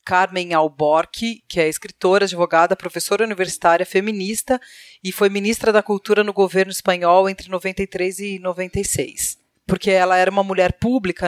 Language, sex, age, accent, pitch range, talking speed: Portuguese, female, 40-59, Brazilian, 180-220 Hz, 145 wpm